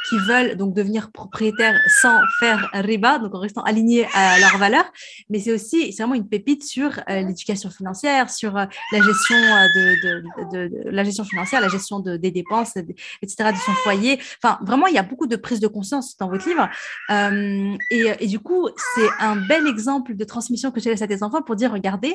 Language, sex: French, female